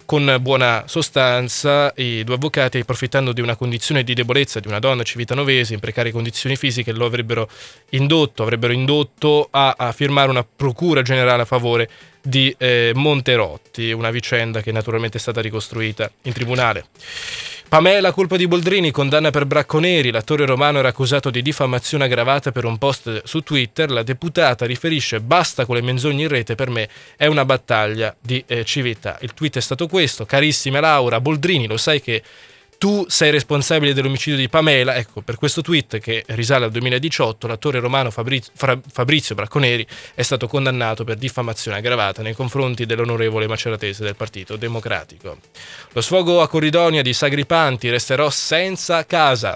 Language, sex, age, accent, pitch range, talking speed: Italian, male, 20-39, native, 120-150 Hz, 160 wpm